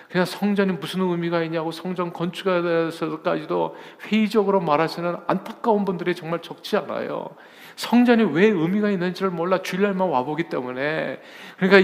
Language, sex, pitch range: Korean, male, 170-215 Hz